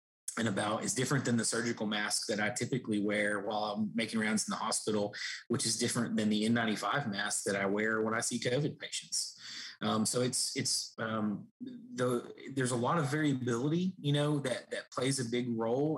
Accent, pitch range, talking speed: American, 110-130 Hz, 200 wpm